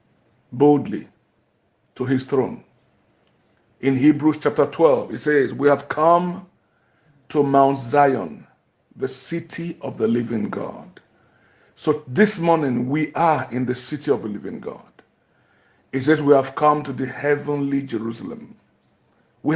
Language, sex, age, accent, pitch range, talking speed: Italian, male, 60-79, Nigerian, 130-155 Hz, 135 wpm